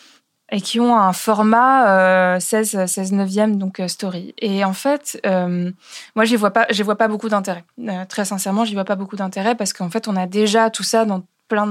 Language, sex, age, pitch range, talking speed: French, female, 20-39, 190-235 Hz, 210 wpm